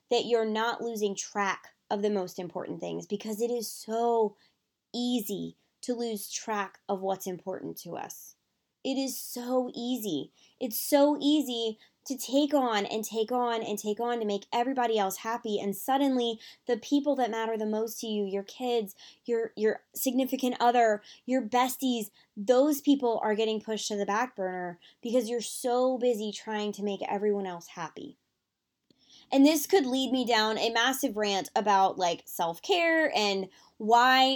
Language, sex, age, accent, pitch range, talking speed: English, female, 20-39, American, 205-255 Hz, 165 wpm